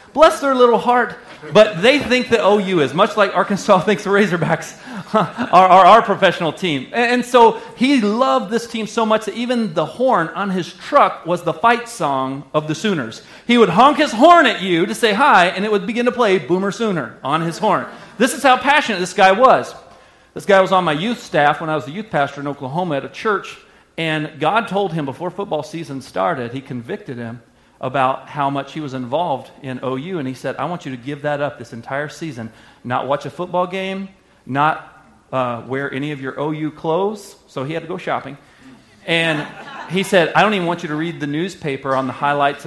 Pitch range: 145-210 Hz